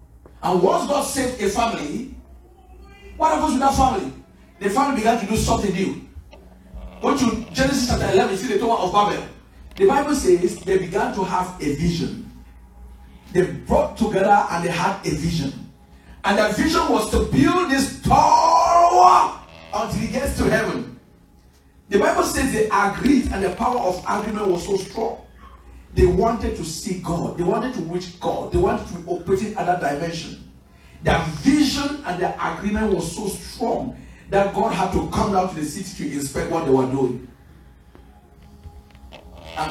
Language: English